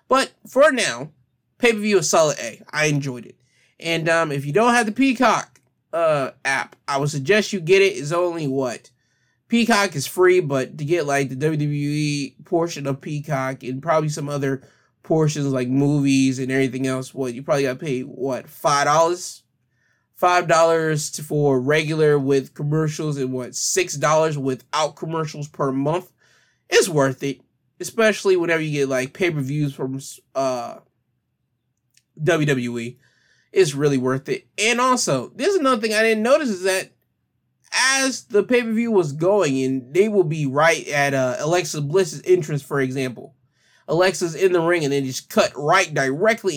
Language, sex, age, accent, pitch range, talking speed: English, male, 20-39, American, 135-185 Hz, 160 wpm